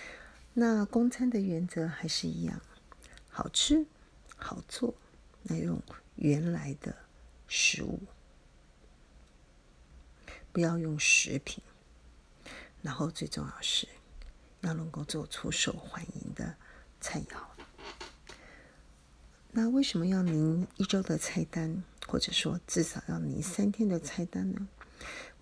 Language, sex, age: Chinese, female, 40-59